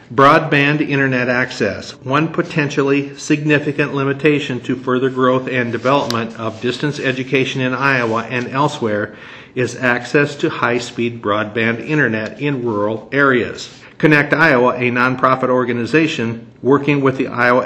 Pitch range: 120-140 Hz